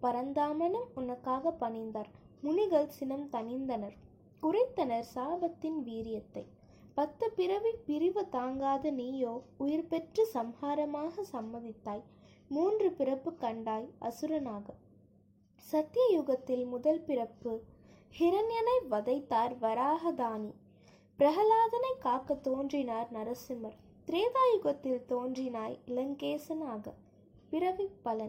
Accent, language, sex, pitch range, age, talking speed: native, Tamil, female, 240-330 Hz, 20-39, 75 wpm